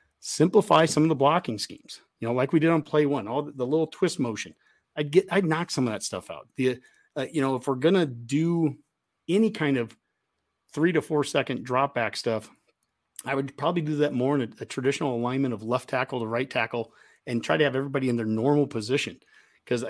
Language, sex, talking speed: English, male, 225 wpm